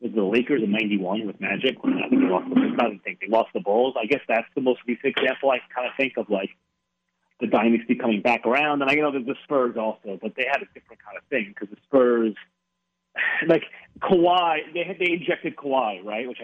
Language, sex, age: English, male, 30-49